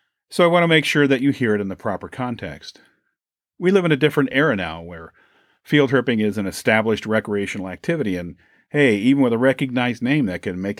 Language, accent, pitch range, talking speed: English, American, 100-135 Hz, 215 wpm